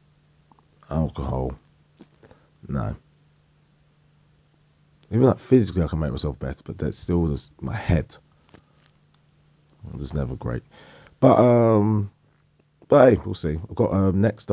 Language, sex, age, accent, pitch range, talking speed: English, male, 30-49, British, 80-110 Hz, 130 wpm